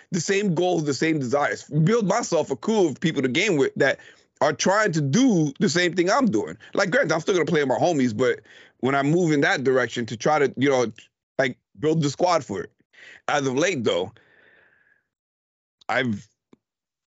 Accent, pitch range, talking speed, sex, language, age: American, 125-160 Hz, 200 wpm, male, English, 30-49